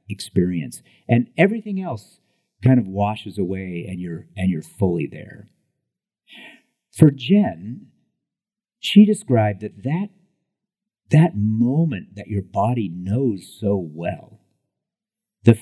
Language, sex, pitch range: English, male, 105-155 Hz